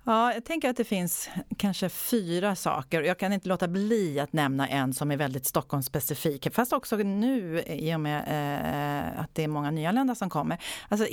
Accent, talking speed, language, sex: Swedish, 190 wpm, English, female